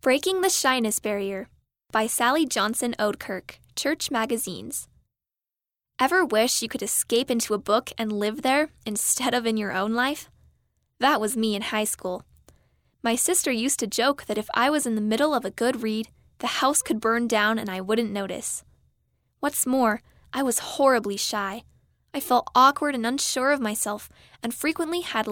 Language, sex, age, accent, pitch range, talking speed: English, female, 10-29, American, 215-275 Hz, 175 wpm